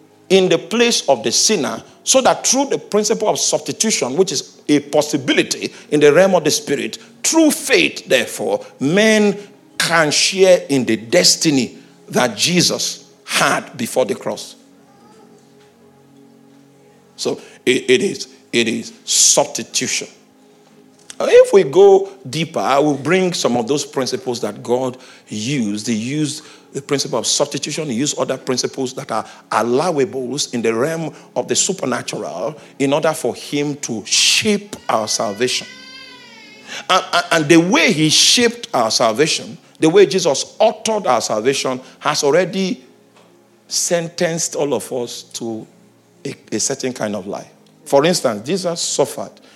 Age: 50-69